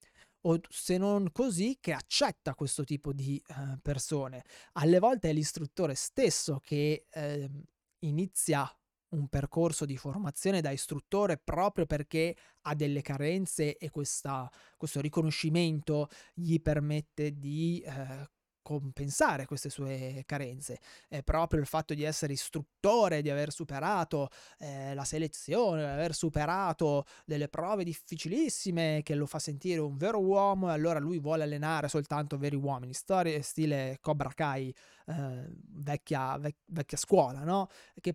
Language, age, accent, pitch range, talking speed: Italian, 20-39, native, 140-165 Hz, 135 wpm